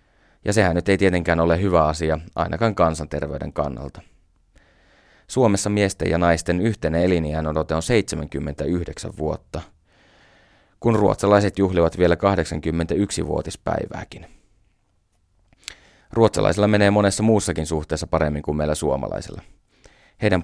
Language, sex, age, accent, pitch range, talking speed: Finnish, male, 30-49, native, 80-105 Hz, 105 wpm